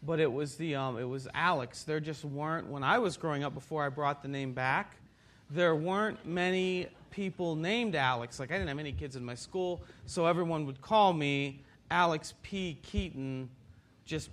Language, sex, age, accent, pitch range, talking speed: English, male, 40-59, American, 135-185 Hz, 195 wpm